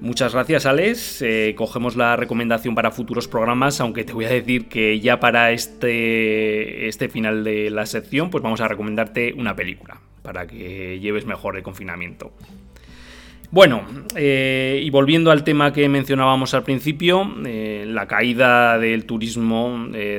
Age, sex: 20-39, male